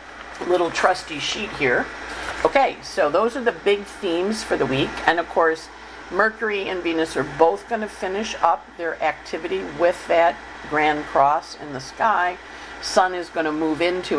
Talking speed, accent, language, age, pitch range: 175 wpm, American, English, 50-69, 140-180 Hz